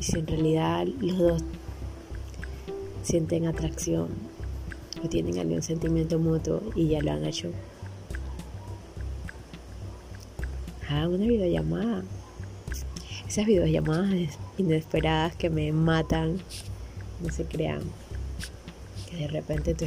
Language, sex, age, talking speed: Spanish, female, 20-39, 105 wpm